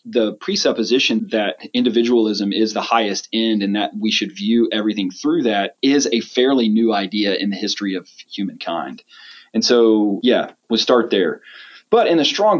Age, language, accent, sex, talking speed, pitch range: 30-49, English, American, male, 170 wpm, 105-175 Hz